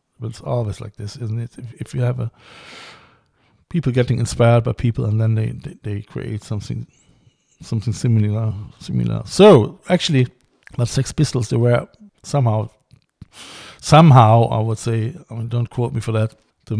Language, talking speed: English, 170 wpm